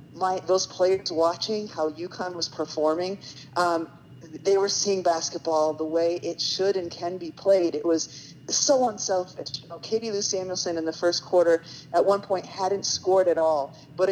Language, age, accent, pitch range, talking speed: English, 40-59, American, 155-185 Hz, 180 wpm